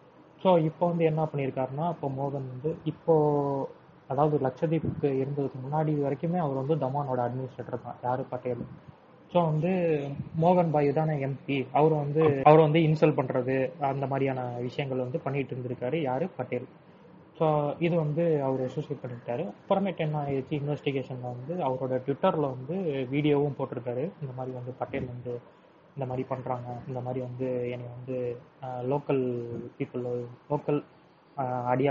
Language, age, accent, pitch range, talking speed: Tamil, 20-39, native, 130-155 Hz, 120 wpm